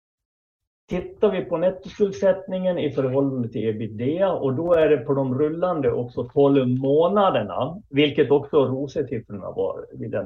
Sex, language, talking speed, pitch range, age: male, Swedish, 135 wpm, 105-160 Hz, 50-69